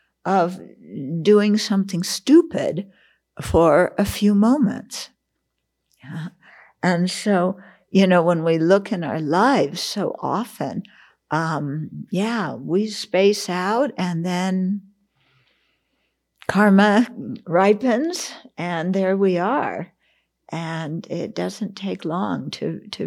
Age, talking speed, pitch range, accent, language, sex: 60-79, 105 wpm, 165-210 Hz, American, English, female